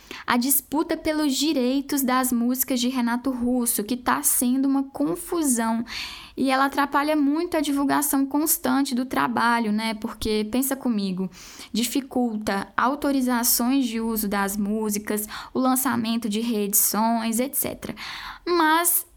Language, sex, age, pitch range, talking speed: Portuguese, female, 10-29, 215-270 Hz, 120 wpm